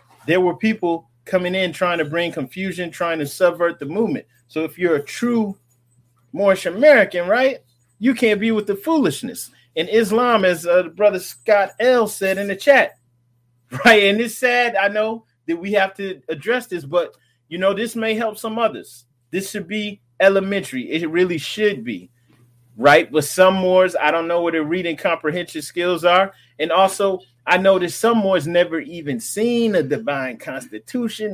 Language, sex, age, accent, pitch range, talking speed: English, male, 30-49, American, 145-210 Hz, 175 wpm